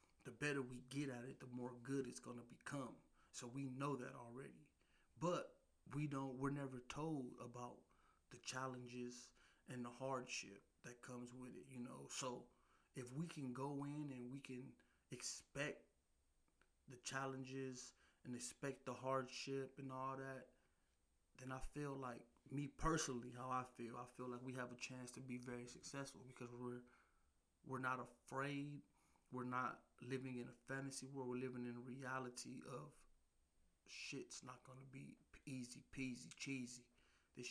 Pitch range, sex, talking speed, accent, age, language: 120-135 Hz, male, 165 wpm, American, 30-49, English